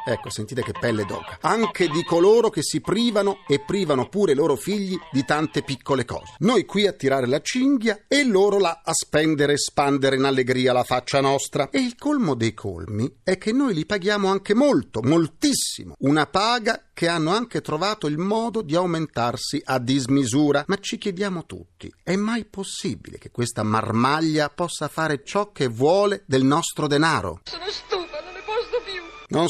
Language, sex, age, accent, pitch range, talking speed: Italian, male, 40-59, native, 115-190 Hz, 170 wpm